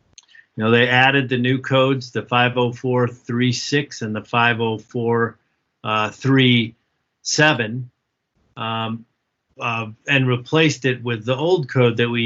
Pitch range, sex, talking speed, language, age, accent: 115-130 Hz, male, 115 wpm, English, 40-59, American